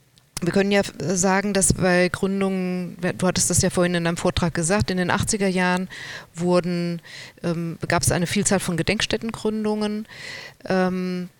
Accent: German